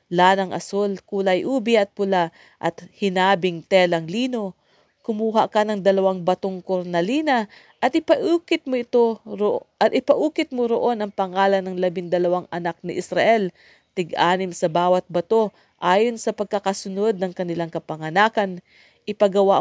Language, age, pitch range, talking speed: English, 40-59, 180-220 Hz, 130 wpm